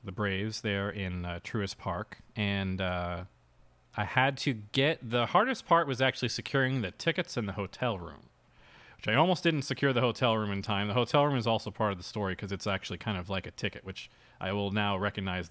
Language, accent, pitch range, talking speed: English, American, 100-125 Hz, 220 wpm